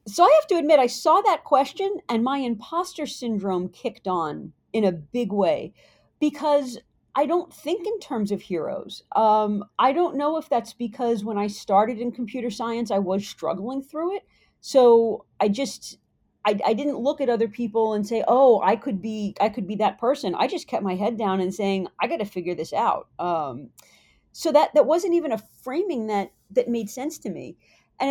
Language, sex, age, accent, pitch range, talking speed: English, female, 40-59, American, 200-285 Hz, 200 wpm